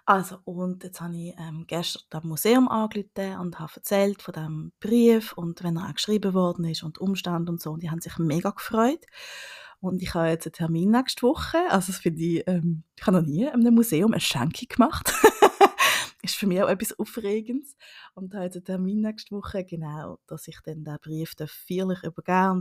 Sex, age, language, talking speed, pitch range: female, 20-39, German, 210 wpm, 165-200 Hz